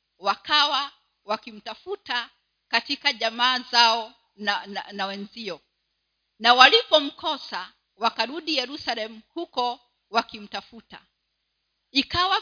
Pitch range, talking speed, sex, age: 220-290 Hz, 75 wpm, female, 40-59